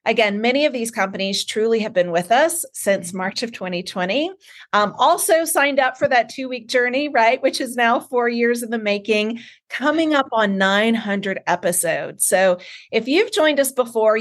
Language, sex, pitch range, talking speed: English, female, 190-260 Hz, 175 wpm